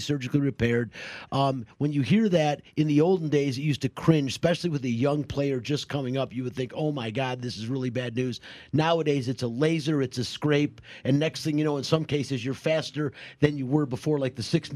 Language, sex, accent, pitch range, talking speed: English, male, American, 120-145 Hz, 235 wpm